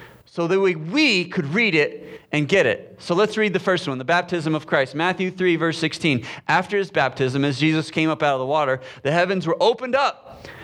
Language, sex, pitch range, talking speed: English, male, 140-195 Hz, 225 wpm